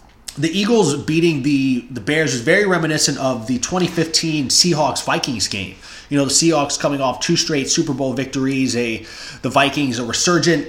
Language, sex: English, male